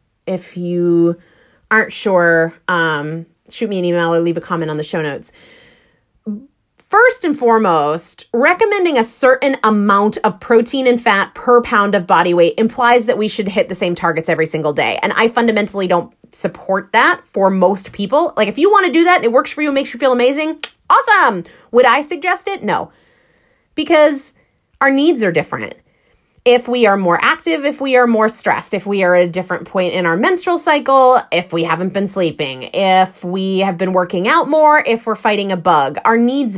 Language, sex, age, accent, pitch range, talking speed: English, female, 30-49, American, 180-255 Hz, 200 wpm